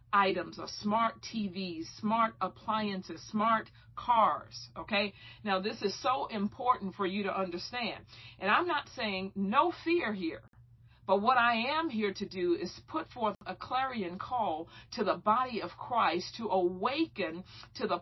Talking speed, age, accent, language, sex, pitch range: 155 wpm, 50-69, American, English, female, 180-230 Hz